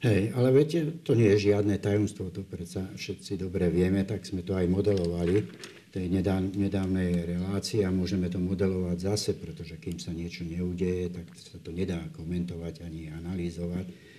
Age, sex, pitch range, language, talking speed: 60-79, male, 85-95 Hz, Slovak, 160 wpm